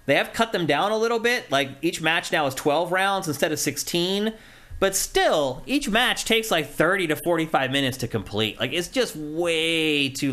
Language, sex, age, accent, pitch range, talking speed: English, male, 30-49, American, 130-180 Hz, 205 wpm